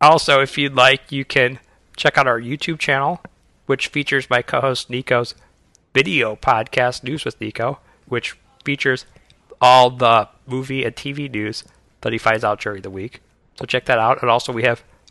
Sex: male